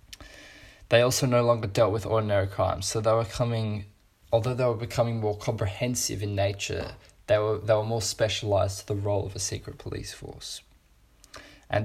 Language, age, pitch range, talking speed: English, 20-39, 100-120 Hz, 175 wpm